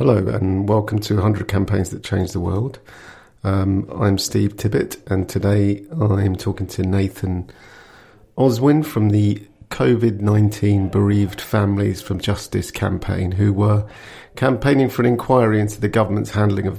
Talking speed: 145 wpm